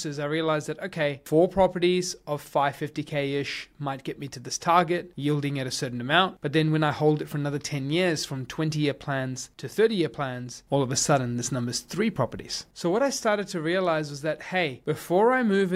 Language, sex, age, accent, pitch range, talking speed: English, male, 30-49, Australian, 135-170 Hz, 230 wpm